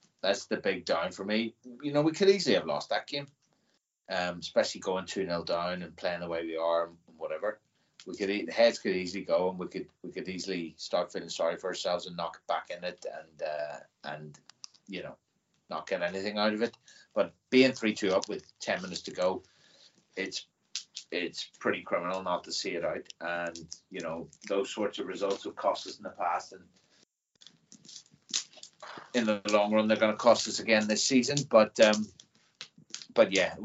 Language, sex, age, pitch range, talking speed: English, male, 30-49, 90-120 Hz, 205 wpm